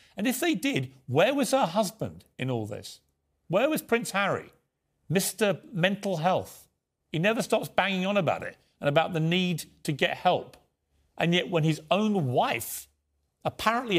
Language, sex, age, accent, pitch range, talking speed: English, male, 50-69, British, 120-170 Hz, 165 wpm